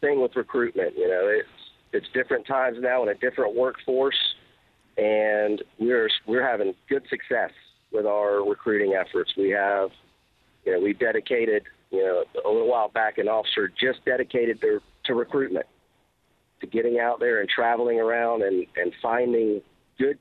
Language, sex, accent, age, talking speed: English, male, American, 50-69, 165 wpm